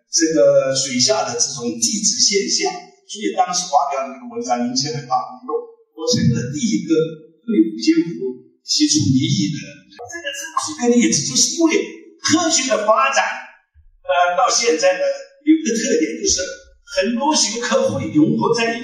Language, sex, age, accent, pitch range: Chinese, male, 50-69, native, 205-320 Hz